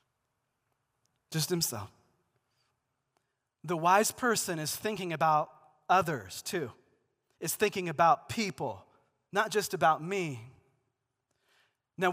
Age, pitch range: 30-49, 145-200 Hz